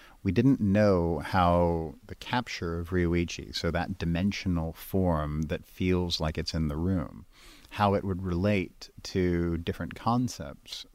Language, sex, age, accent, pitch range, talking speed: English, male, 50-69, American, 85-95 Hz, 140 wpm